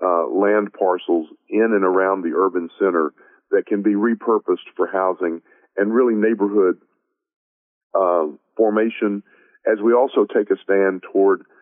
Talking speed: 140 wpm